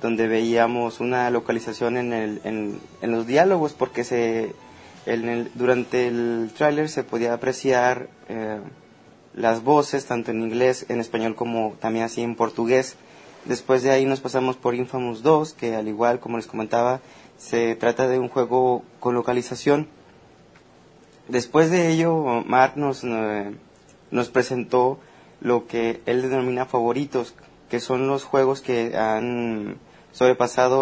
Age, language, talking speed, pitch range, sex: 30-49, Spanish, 140 wpm, 115-135 Hz, male